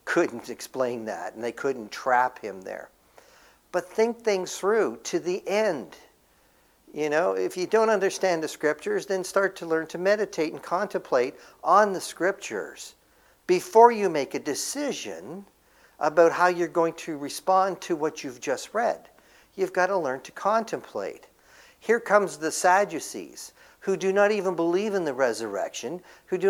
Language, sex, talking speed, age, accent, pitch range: English, male, 160 wpm, 60-79, American, 145-210 Hz